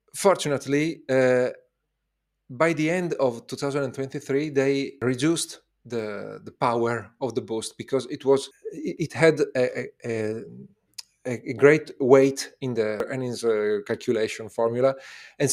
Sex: male